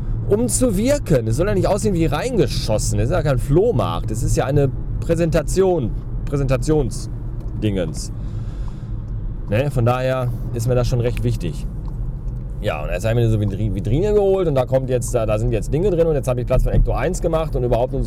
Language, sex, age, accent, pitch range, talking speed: German, male, 30-49, German, 120-165 Hz, 205 wpm